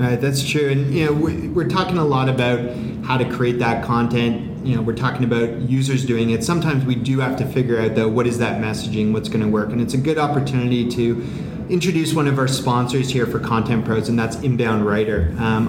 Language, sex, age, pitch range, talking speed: English, male, 30-49, 120-140 Hz, 225 wpm